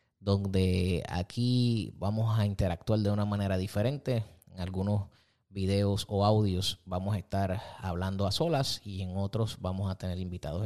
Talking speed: 150 wpm